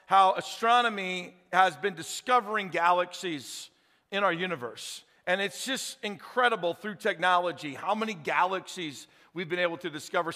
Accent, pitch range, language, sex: American, 180-255 Hz, English, male